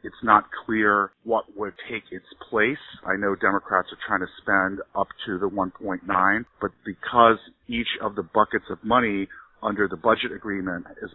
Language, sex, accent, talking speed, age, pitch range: English, male, American, 170 wpm, 40-59, 95-115 Hz